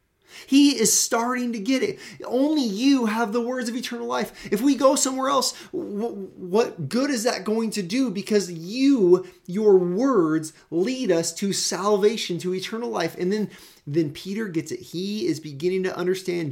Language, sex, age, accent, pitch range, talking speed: English, male, 30-49, American, 130-205 Hz, 175 wpm